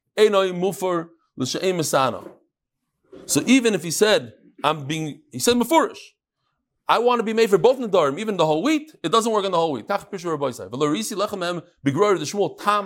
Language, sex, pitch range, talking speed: English, male, 155-255 Hz, 140 wpm